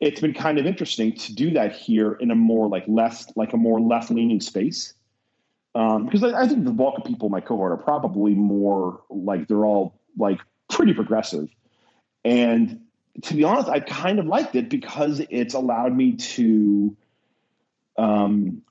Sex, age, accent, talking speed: male, 30-49, American, 180 wpm